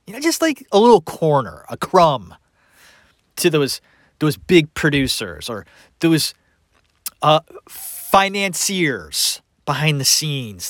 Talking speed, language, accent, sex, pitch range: 120 wpm, English, American, male, 145-195 Hz